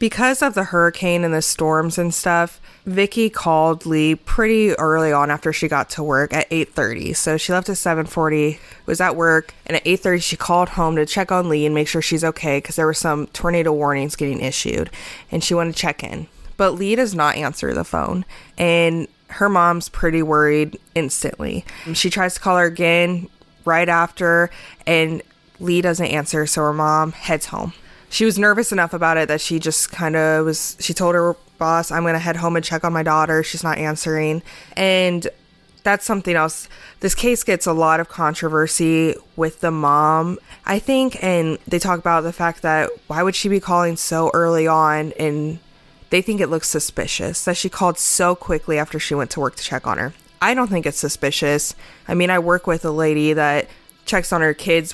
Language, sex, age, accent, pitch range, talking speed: English, female, 20-39, American, 155-175 Hz, 205 wpm